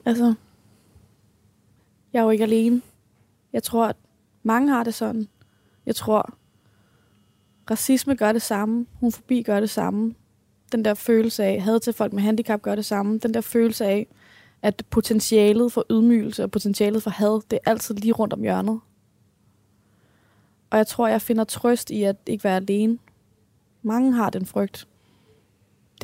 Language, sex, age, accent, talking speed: Danish, female, 20-39, native, 170 wpm